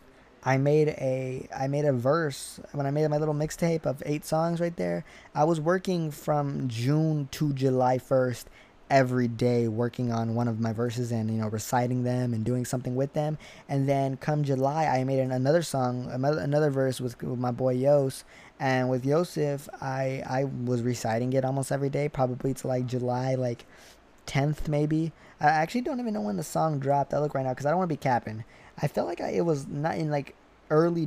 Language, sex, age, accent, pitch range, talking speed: English, male, 20-39, American, 125-150 Hz, 210 wpm